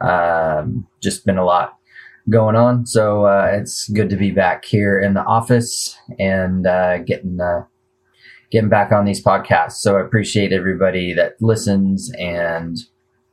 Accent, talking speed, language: American, 155 wpm, English